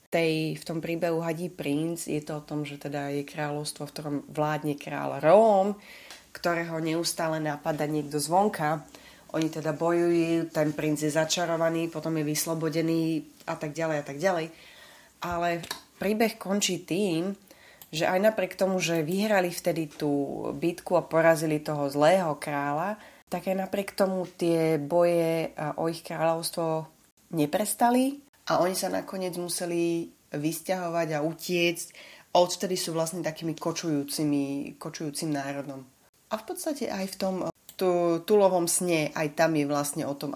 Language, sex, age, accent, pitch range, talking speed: English, female, 30-49, Czech, 150-170 Hz, 145 wpm